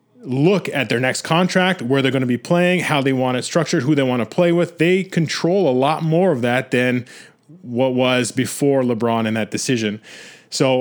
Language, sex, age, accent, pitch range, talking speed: English, male, 30-49, American, 120-150 Hz, 210 wpm